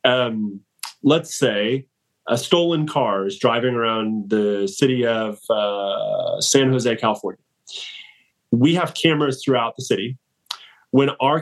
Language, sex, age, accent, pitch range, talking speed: English, male, 30-49, American, 115-145 Hz, 125 wpm